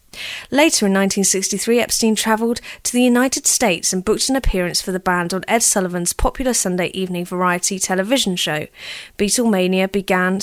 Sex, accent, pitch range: female, British, 185-225 Hz